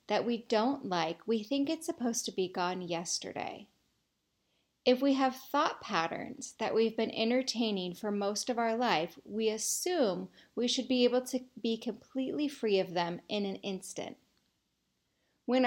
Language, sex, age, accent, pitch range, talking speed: English, female, 30-49, American, 195-255 Hz, 160 wpm